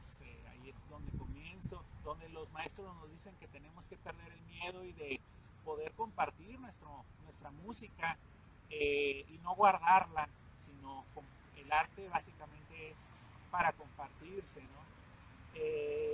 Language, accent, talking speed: Spanish, Mexican, 140 wpm